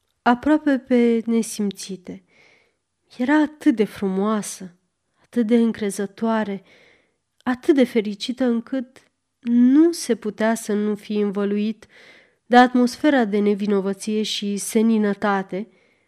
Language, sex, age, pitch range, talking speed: Romanian, female, 30-49, 195-250 Hz, 100 wpm